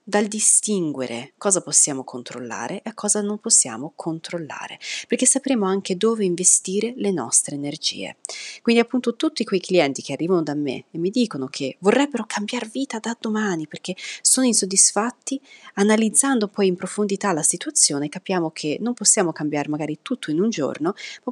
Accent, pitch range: native, 155-225 Hz